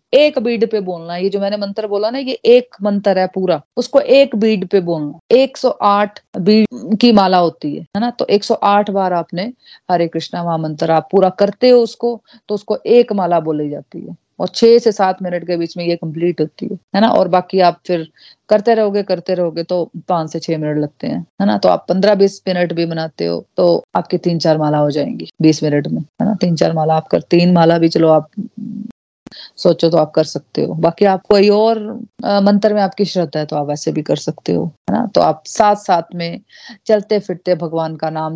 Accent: native